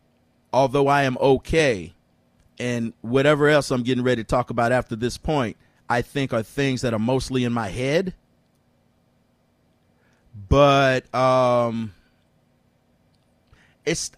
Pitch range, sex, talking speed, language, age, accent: 120-150 Hz, male, 125 wpm, English, 30-49, American